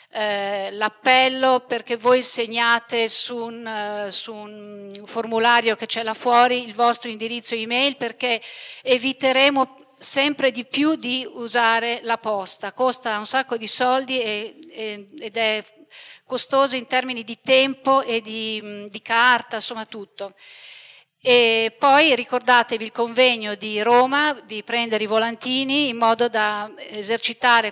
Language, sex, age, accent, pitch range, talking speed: Italian, female, 40-59, native, 220-255 Hz, 135 wpm